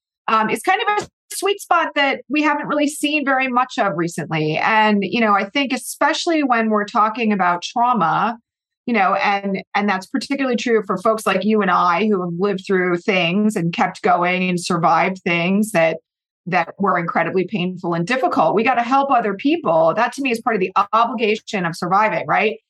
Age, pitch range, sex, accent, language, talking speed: 30-49, 195-255 Hz, female, American, English, 200 wpm